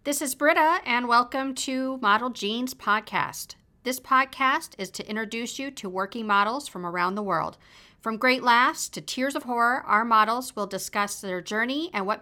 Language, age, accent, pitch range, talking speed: English, 50-69, American, 210-260 Hz, 180 wpm